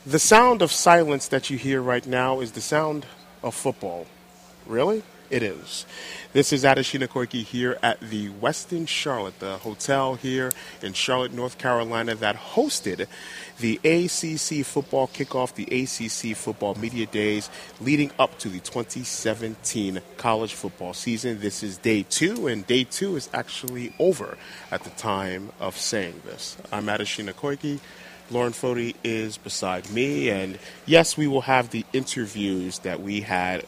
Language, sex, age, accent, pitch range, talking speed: English, male, 30-49, American, 100-130 Hz, 155 wpm